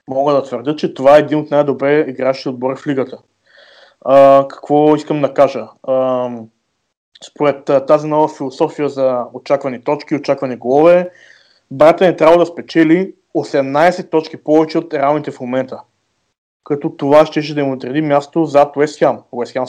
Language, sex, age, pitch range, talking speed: Bulgarian, male, 20-39, 135-155 Hz, 155 wpm